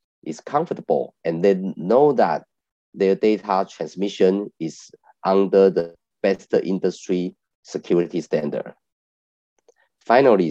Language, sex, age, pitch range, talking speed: English, male, 30-49, 85-105 Hz, 95 wpm